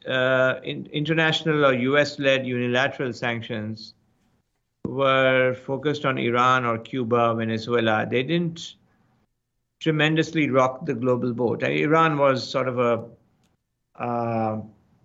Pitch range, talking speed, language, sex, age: 115-140 Hz, 110 wpm, English, male, 50-69